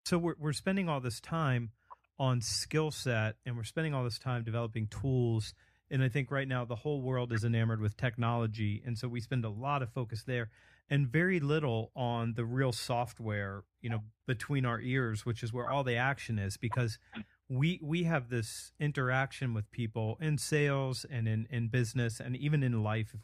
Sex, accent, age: male, American, 40-59